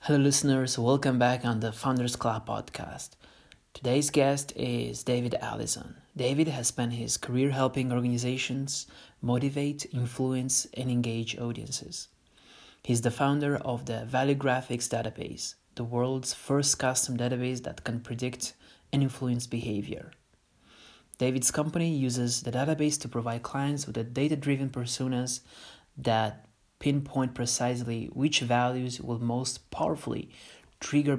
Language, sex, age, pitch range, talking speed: English, male, 30-49, 120-140 Hz, 125 wpm